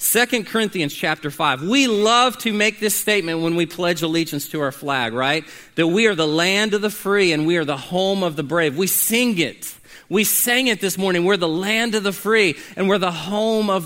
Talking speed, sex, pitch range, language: 230 wpm, male, 165-230 Hz, English